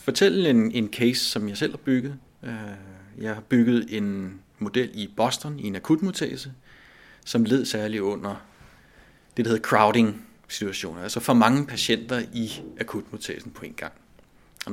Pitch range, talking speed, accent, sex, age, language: 105-135 Hz, 145 wpm, native, male, 30-49, Danish